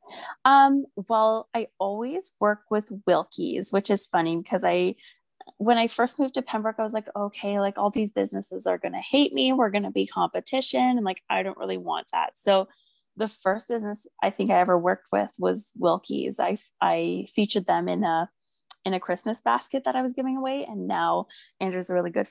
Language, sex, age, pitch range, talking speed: English, female, 20-39, 180-225 Hz, 205 wpm